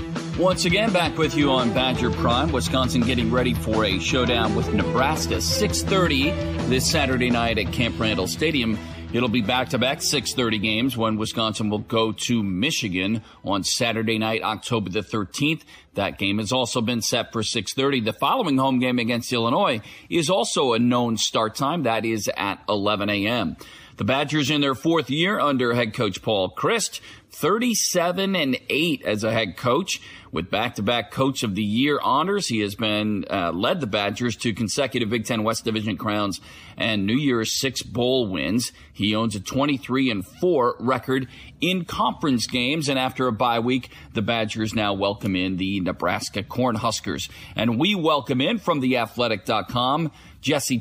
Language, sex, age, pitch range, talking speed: English, male, 40-59, 105-135 Hz, 165 wpm